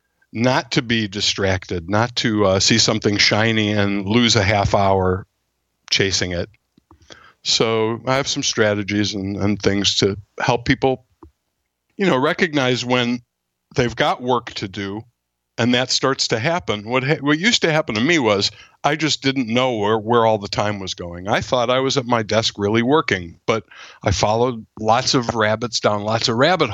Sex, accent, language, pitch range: male, American, English, 100-135 Hz